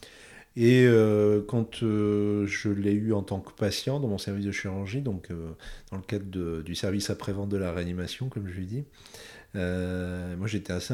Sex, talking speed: male, 185 wpm